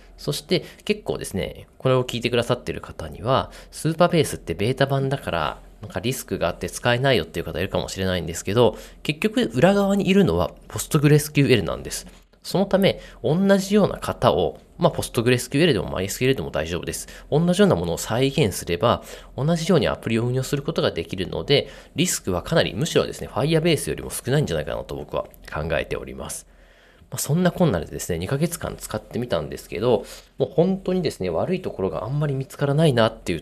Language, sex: Japanese, male